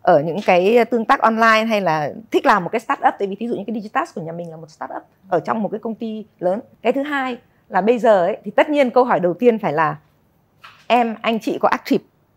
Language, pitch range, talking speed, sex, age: Vietnamese, 185-245 Hz, 260 wpm, female, 20-39